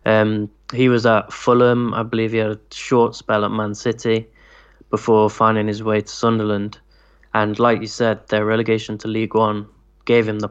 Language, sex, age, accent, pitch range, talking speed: English, male, 20-39, British, 105-115 Hz, 190 wpm